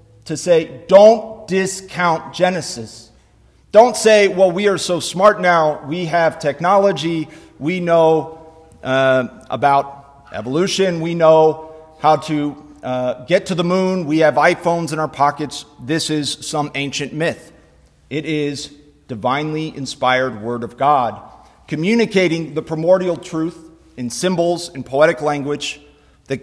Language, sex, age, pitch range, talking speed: English, male, 40-59, 135-180 Hz, 130 wpm